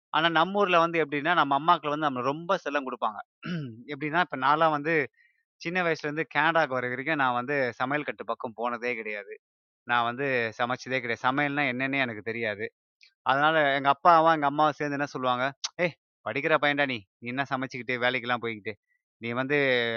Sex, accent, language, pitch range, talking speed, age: male, native, Tamil, 125-150 Hz, 160 wpm, 20-39